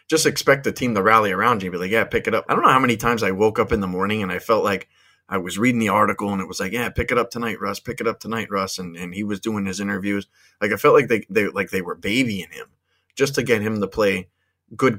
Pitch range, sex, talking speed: 95-115 Hz, male, 305 wpm